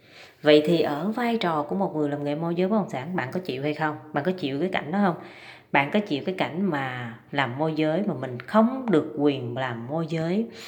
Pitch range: 145-205 Hz